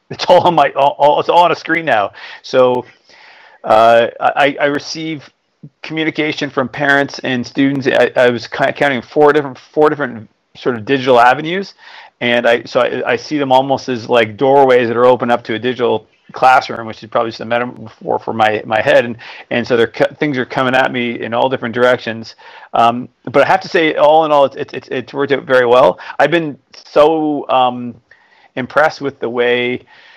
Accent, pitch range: American, 120-145 Hz